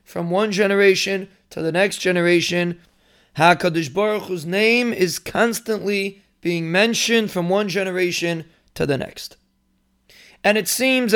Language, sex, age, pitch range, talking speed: English, male, 30-49, 165-210 Hz, 130 wpm